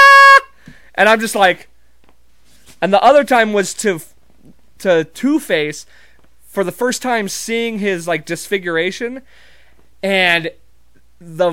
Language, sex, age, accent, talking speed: English, male, 30-49, American, 115 wpm